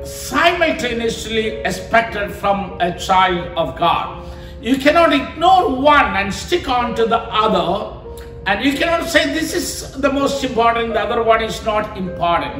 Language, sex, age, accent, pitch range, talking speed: Malayalam, male, 50-69, native, 205-275 Hz, 155 wpm